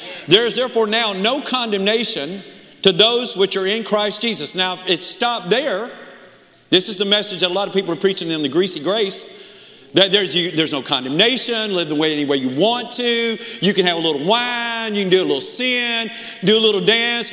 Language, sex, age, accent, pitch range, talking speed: English, male, 40-59, American, 195-235 Hz, 210 wpm